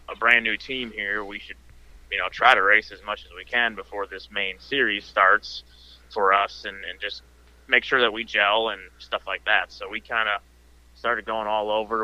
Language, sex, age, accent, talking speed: English, male, 20-39, American, 220 wpm